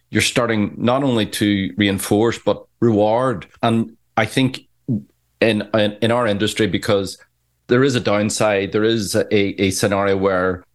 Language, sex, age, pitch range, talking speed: English, male, 30-49, 100-115 Hz, 150 wpm